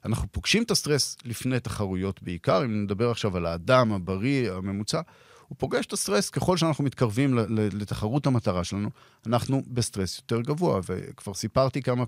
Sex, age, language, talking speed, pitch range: male, 40-59, Hebrew, 155 wpm, 105-140 Hz